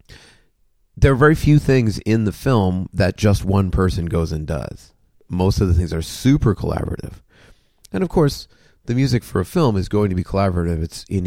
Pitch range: 90-120 Hz